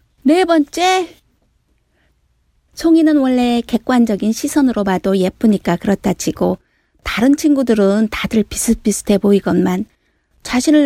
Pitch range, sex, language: 200-265 Hz, female, Korean